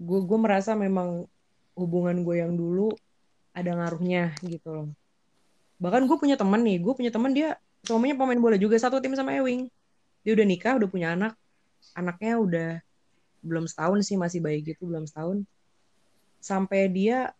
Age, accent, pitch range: 20-39, native, 175-210 Hz